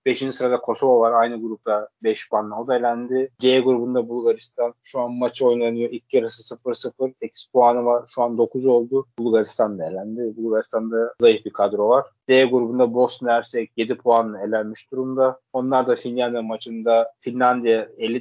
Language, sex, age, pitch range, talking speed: Turkish, male, 20-39, 115-130 Hz, 160 wpm